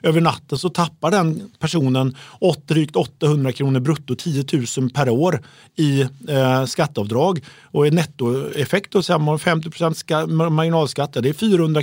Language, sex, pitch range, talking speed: Swedish, male, 135-170 Hz, 145 wpm